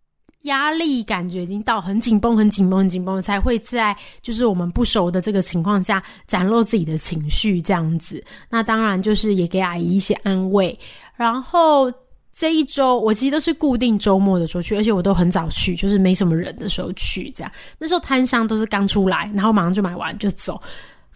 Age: 20-39